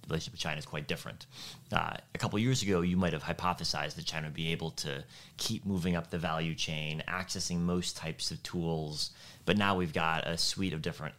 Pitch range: 85-105 Hz